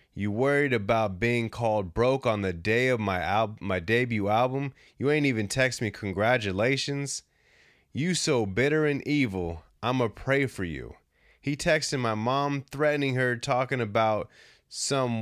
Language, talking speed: English, 155 wpm